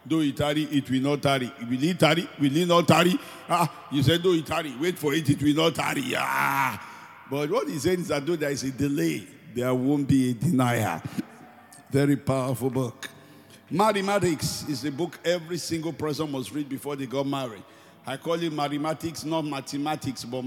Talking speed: 195 wpm